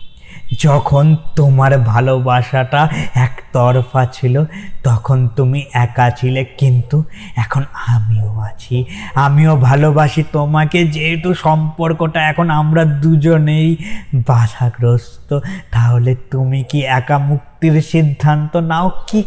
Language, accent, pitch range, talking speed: Bengali, native, 120-155 Hz, 95 wpm